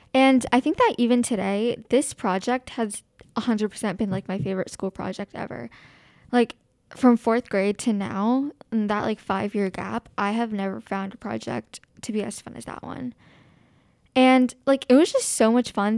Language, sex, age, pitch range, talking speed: English, female, 10-29, 205-245 Hz, 185 wpm